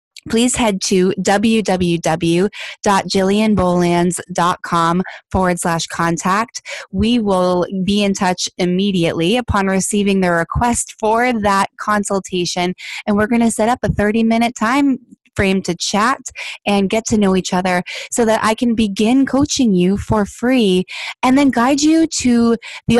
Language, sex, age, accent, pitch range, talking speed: English, female, 20-39, American, 180-220 Hz, 140 wpm